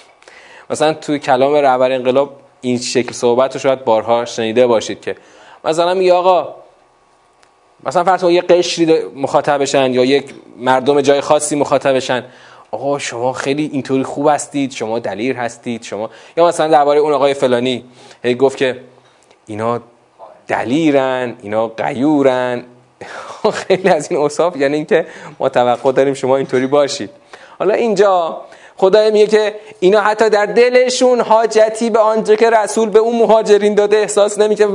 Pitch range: 130-195 Hz